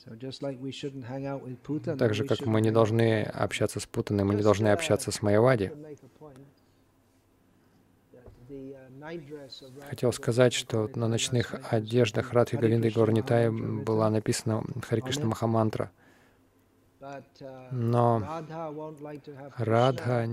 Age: 20-39